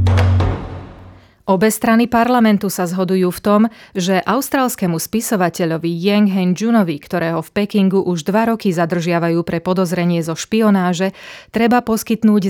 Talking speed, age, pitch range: 125 wpm, 30-49, 175-205 Hz